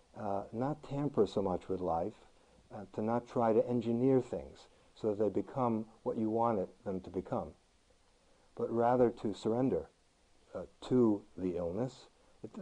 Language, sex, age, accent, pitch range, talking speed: English, male, 60-79, American, 110-135 Hz, 155 wpm